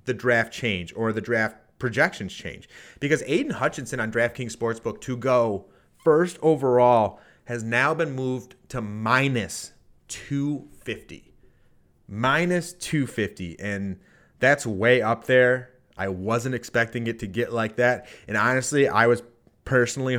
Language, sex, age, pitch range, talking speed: English, male, 30-49, 110-130 Hz, 135 wpm